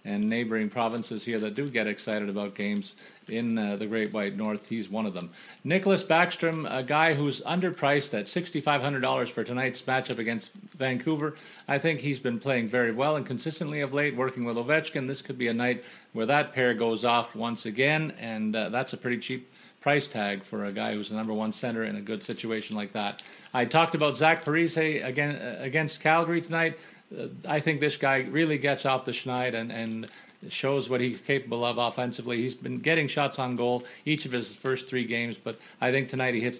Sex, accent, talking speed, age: male, American, 205 wpm, 40-59